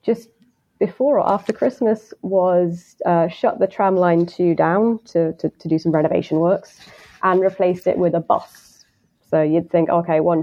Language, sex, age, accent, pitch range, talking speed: English, female, 20-39, British, 165-195 Hz, 180 wpm